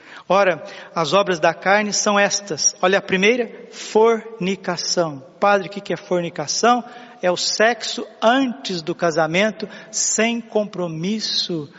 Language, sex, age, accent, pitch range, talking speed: Portuguese, male, 50-69, Brazilian, 190-230 Hz, 120 wpm